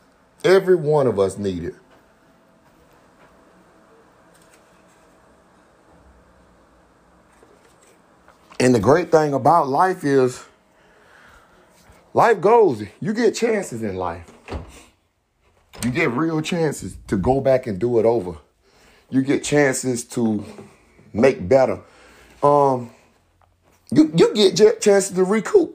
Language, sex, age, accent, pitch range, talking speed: English, male, 30-49, American, 100-160 Hz, 105 wpm